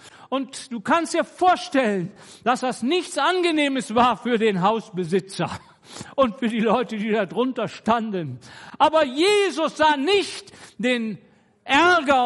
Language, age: German, 50-69